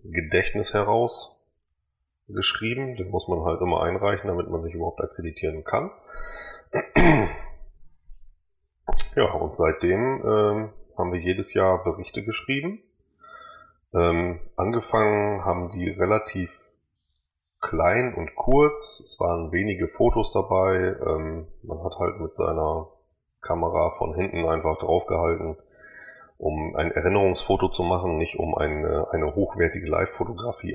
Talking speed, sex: 115 wpm, male